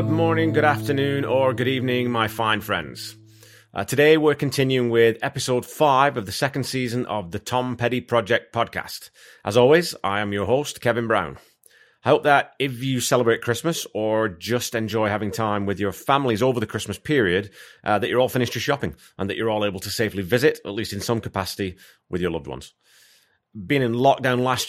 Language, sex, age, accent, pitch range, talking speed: English, male, 30-49, British, 100-125 Hz, 200 wpm